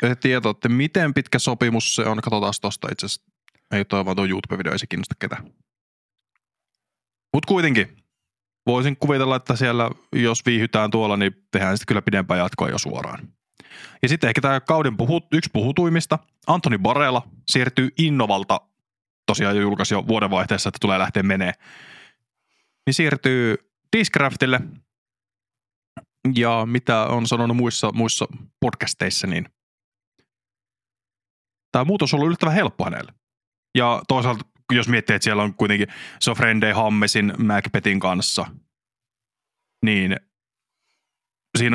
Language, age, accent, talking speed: Finnish, 20-39, native, 125 wpm